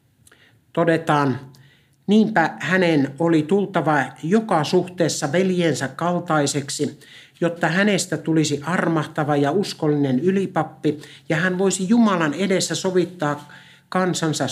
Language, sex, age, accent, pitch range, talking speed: Finnish, male, 60-79, native, 145-175 Hz, 95 wpm